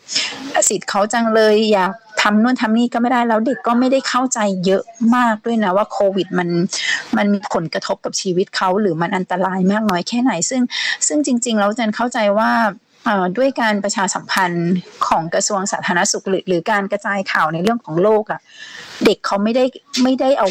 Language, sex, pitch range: Thai, female, 185-230 Hz